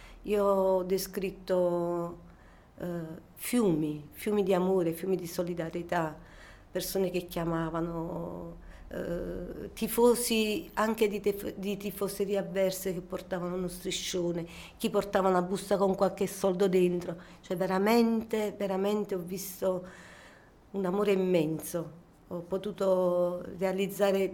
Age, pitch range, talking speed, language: 40-59, 175-195 Hz, 110 wpm, Italian